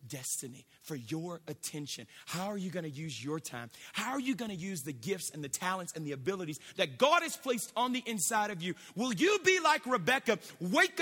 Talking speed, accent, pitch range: 225 wpm, American, 160-225 Hz